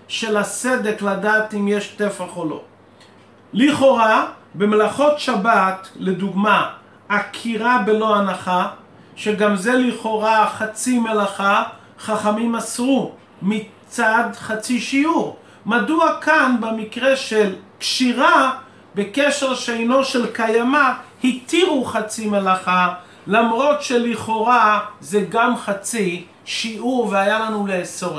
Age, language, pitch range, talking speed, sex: 40-59, English, 205-250 Hz, 95 wpm, male